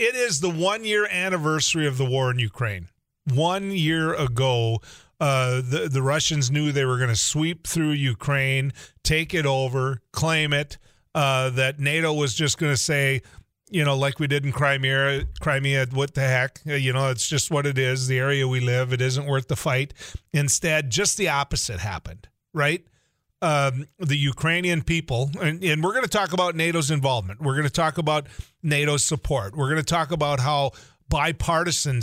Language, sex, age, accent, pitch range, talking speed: English, male, 40-59, American, 130-155 Hz, 180 wpm